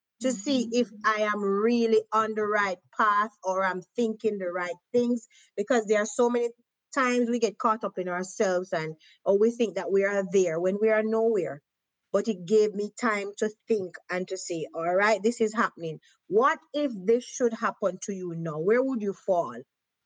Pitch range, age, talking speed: 195-255 Hz, 30-49, 195 wpm